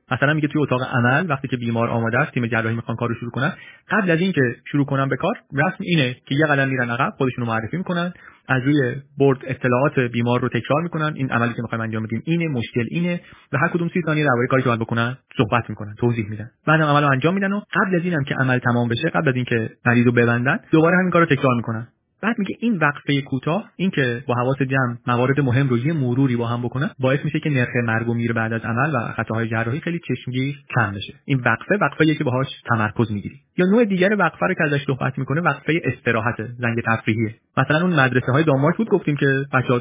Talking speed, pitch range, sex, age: 225 wpm, 120-155 Hz, male, 30-49